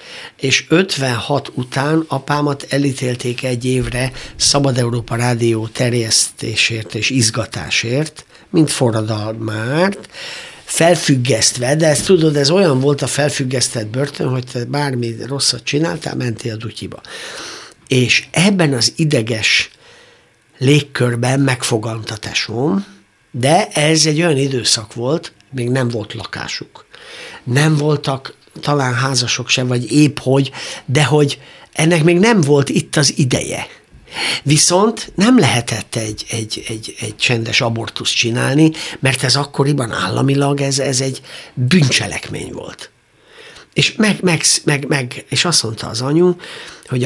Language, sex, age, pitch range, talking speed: Hungarian, male, 60-79, 115-150 Hz, 120 wpm